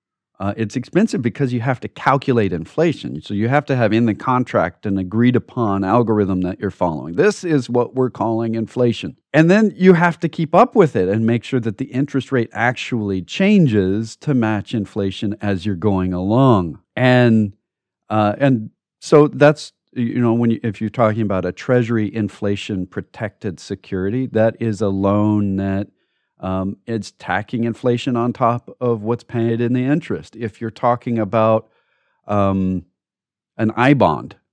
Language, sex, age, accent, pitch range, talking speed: English, male, 40-59, American, 100-130 Hz, 170 wpm